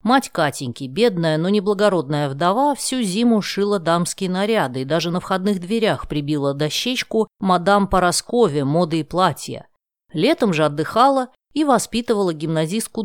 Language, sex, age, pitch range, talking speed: Russian, female, 20-39, 150-210 Hz, 135 wpm